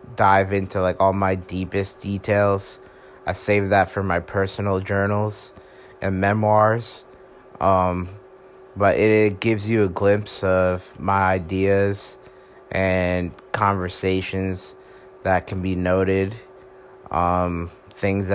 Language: English